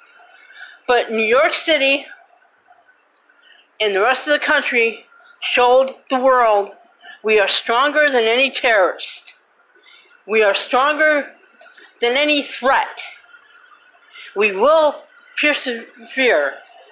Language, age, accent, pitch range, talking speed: English, 50-69, American, 240-355 Hz, 100 wpm